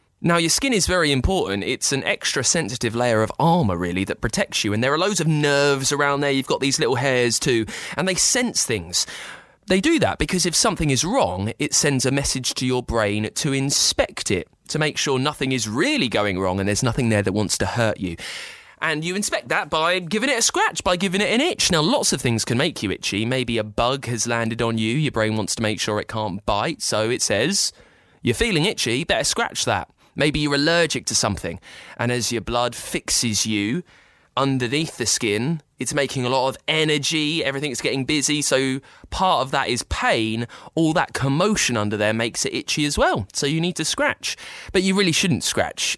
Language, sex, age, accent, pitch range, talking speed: English, male, 20-39, British, 110-155 Hz, 215 wpm